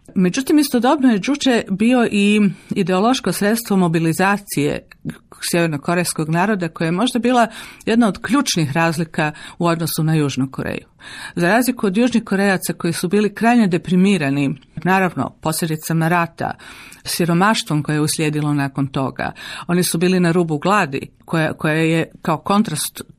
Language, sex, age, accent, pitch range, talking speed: Croatian, female, 50-69, native, 160-210 Hz, 140 wpm